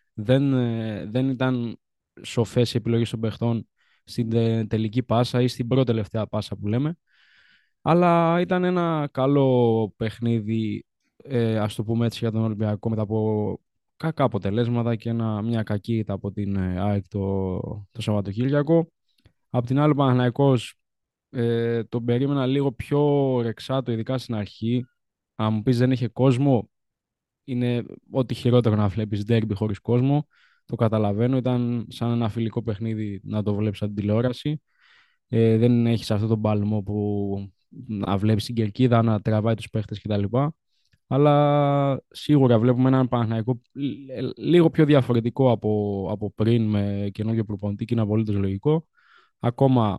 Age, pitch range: 20-39, 110-130 Hz